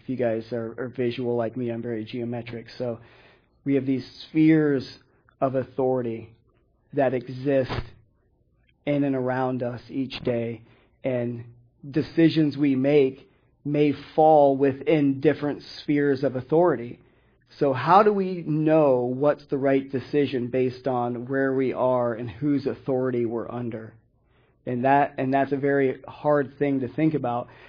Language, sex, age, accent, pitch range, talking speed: English, male, 40-59, American, 125-145 Hz, 140 wpm